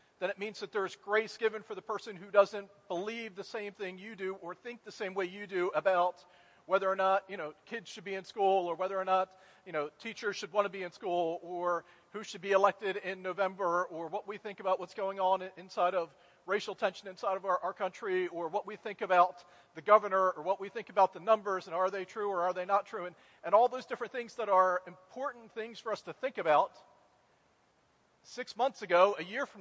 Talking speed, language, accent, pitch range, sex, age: 235 wpm, English, American, 185-225 Hz, male, 40-59